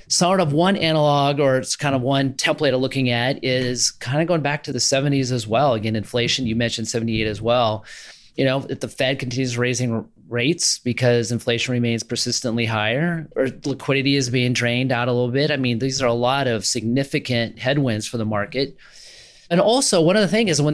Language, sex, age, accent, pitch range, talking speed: English, male, 30-49, American, 115-145 Hz, 210 wpm